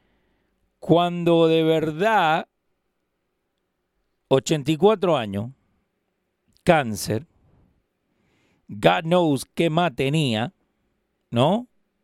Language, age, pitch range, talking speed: Spanish, 40-59, 135-190 Hz, 60 wpm